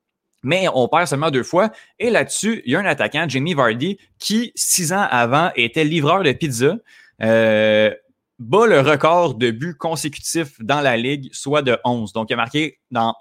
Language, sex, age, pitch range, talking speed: French, male, 20-39, 115-155 Hz, 185 wpm